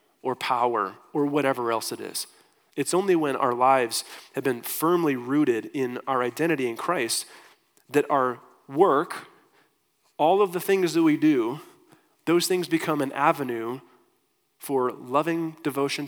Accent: American